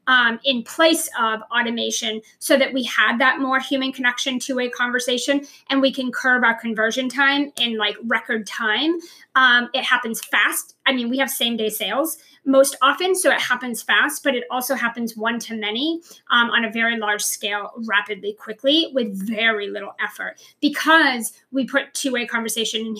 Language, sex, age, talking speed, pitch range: English, female, 30-49, 185 wpm, 225-280 Hz